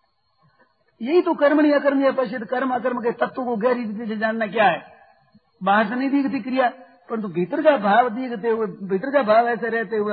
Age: 50-69